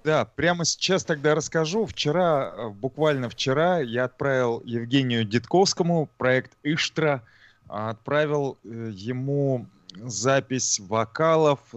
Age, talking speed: 20-39, 90 wpm